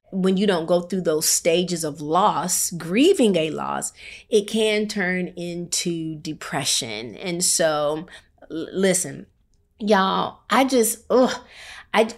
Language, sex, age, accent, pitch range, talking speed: English, female, 30-49, American, 155-190 Hz, 125 wpm